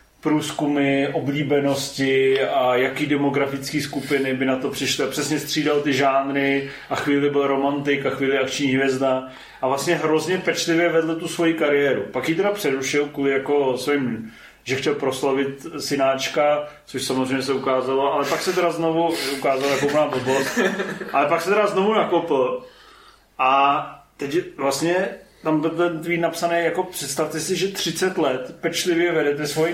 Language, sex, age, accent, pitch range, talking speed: Czech, male, 30-49, native, 140-170 Hz, 155 wpm